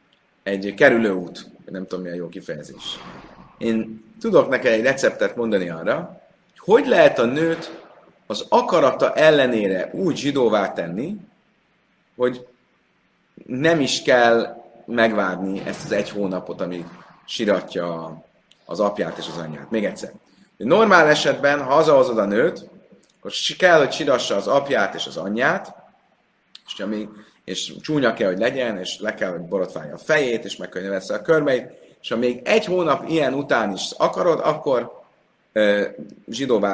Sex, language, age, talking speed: male, Hungarian, 30-49, 145 wpm